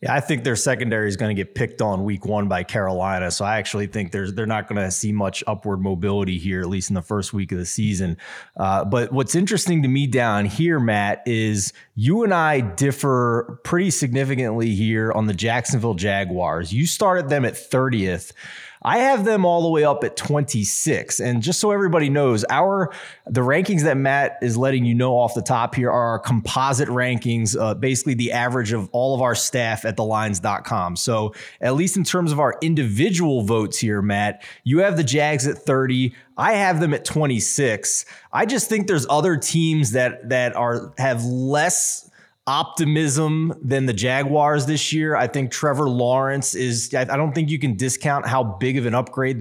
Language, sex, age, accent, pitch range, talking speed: English, male, 20-39, American, 110-145 Hz, 195 wpm